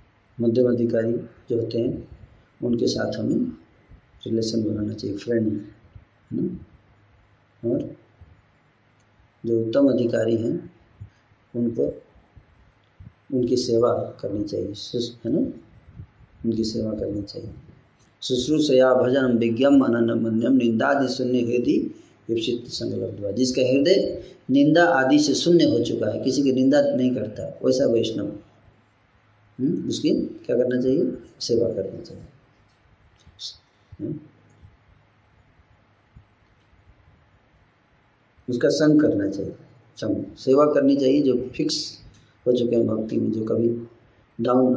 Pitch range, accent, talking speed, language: 105-130 Hz, native, 115 wpm, Hindi